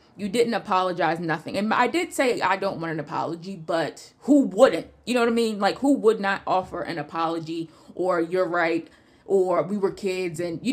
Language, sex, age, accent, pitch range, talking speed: English, female, 20-39, American, 175-210 Hz, 205 wpm